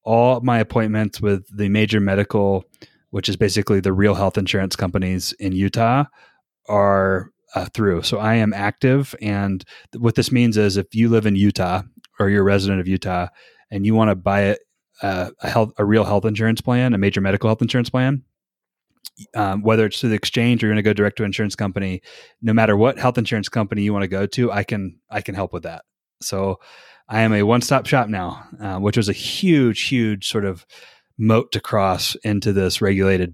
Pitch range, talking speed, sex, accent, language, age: 100-115 Hz, 205 wpm, male, American, English, 30-49